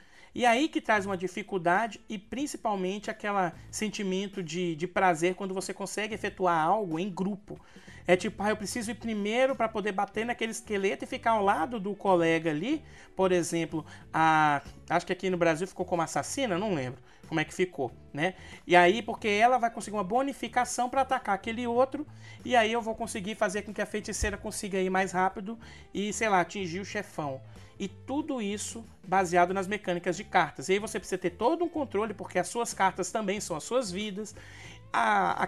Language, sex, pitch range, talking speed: Portuguese, male, 175-220 Hz, 195 wpm